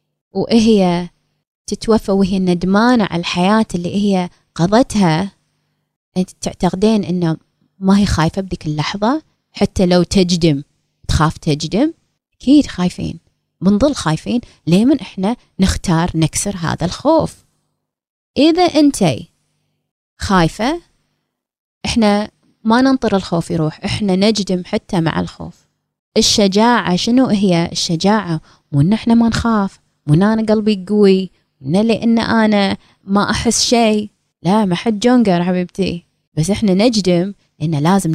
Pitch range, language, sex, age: 170-215 Hz, Arabic, female, 20-39